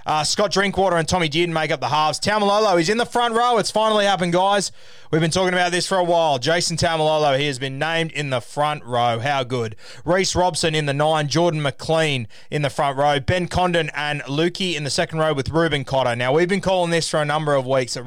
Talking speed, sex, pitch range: 240 wpm, male, 130-170 Hz